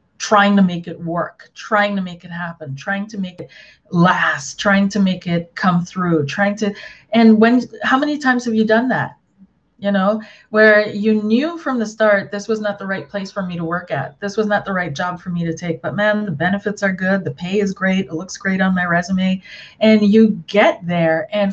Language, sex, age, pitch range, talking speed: English, female, 30-49, 175-210 Hz, 230 wpm